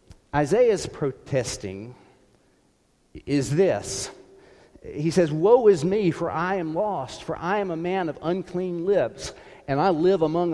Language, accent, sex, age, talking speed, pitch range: English, American, male, 50-69, 140 wpm, 125-175 Hz